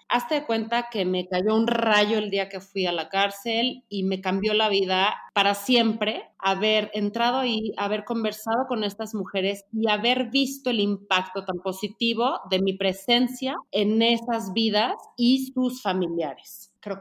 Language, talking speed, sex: Spanish, 165 wpm, female